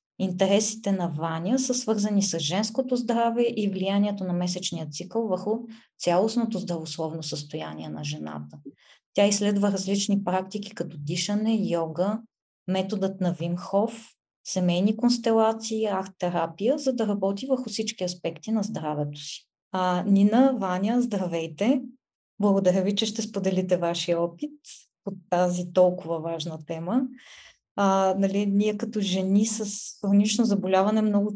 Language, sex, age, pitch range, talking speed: Bulgarian, female, 20-39, 175-210 Hz, 125 wpm